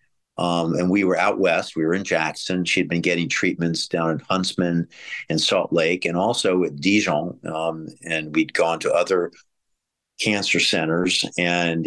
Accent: American